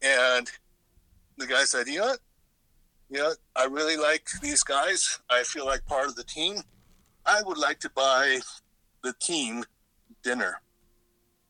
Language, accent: English, American